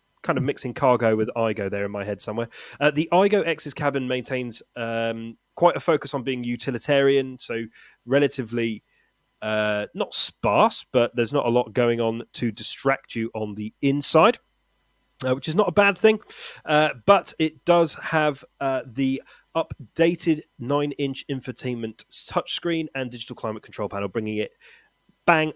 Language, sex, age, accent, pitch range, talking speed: English, male, 30-49, British, 115-155 Hz, 160 wpm